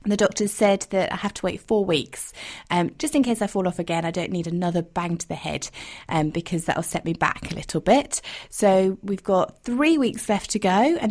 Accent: British